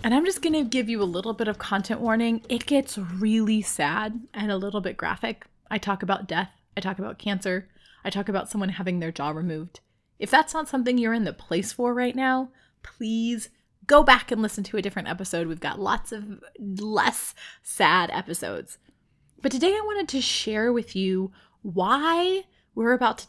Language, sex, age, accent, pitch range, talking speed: English, female, 20-39, American, 195-255 Hz, 200 wpm